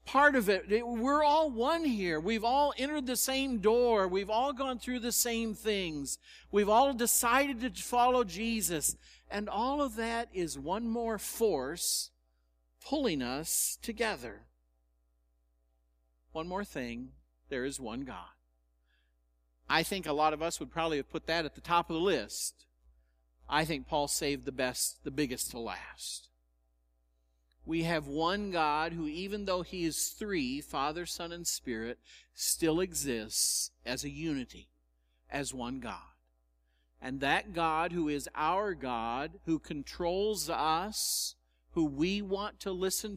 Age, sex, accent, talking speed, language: 50-69, male, American, 150 wpm, English